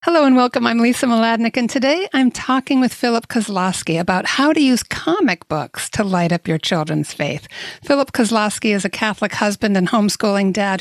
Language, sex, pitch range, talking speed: English, female, 185-240 Hz, 190 wpm